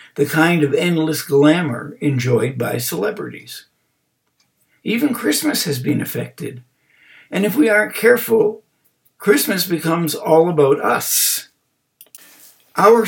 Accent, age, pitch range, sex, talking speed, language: American, 60-79, 135-175 Hz, male, 110 wpm, English